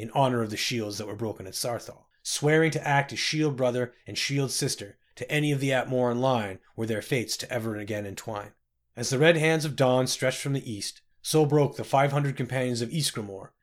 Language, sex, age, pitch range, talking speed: English, male, 30-49, 115-150 Hz, 215 wpm